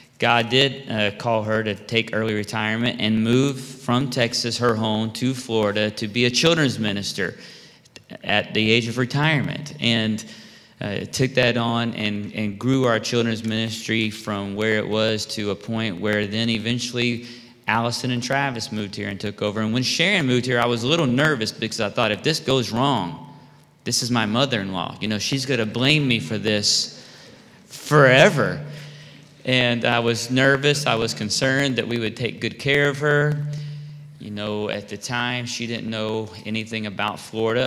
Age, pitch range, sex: 30-49, 105-125 Hz, male